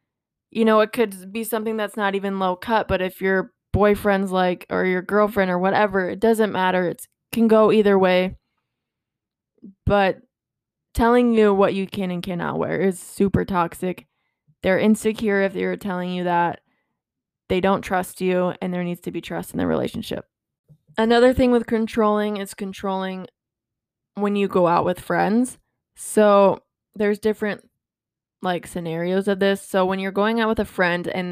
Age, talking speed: 20-39, 170 wpm